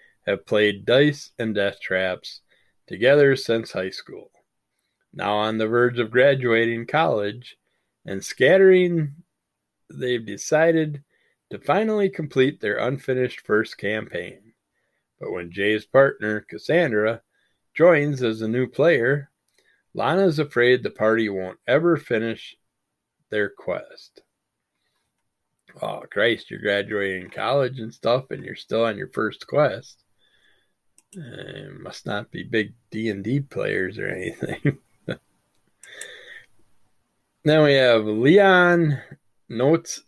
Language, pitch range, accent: English, 105-145 Hz, American